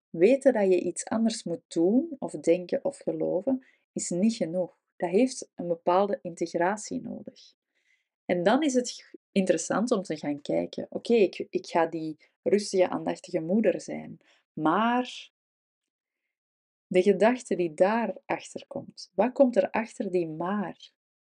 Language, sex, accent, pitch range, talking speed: Dutch, female, Dutch, 175-250 Hz, 140 wpm